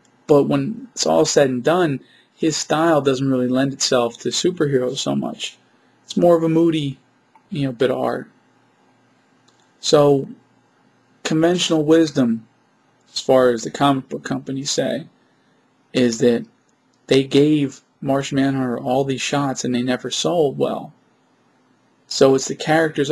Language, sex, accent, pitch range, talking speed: English, male, American, 125-165 Hz, 140 wpm